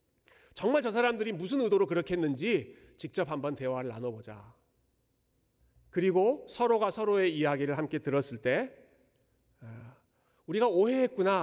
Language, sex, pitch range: Korean, male, 125-185 Hz